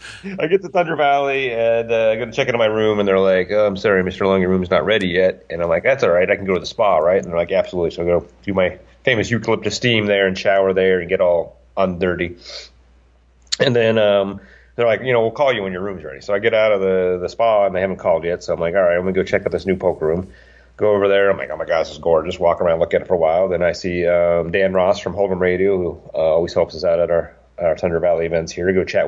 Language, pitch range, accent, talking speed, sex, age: English, 90-110 Hz, American, 300 wpm, male, 30-49